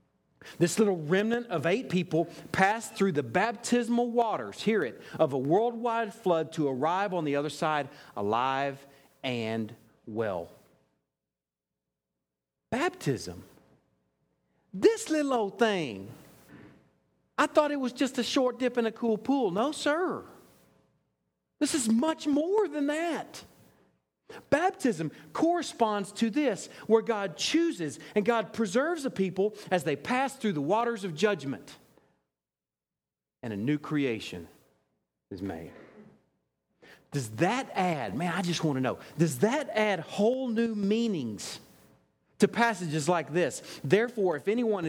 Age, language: 50-69, English